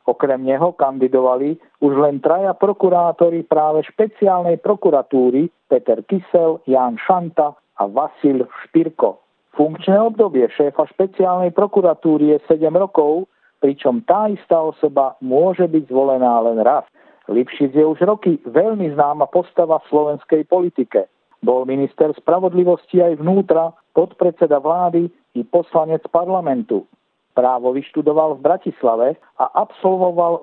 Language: Slovak